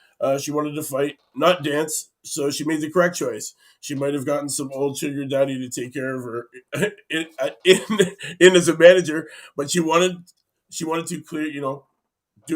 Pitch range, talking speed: 135-160 Hz, 200 wpm